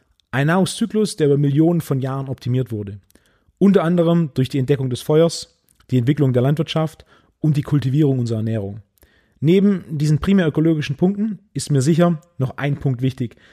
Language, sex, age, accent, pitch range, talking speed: German, male, 30-49, German, 130-175 Hz, 165 wpm